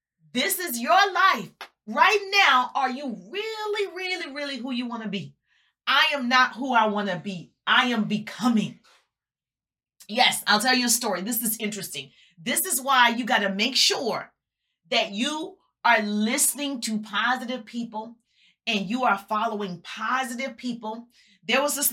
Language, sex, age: English, female, 30-49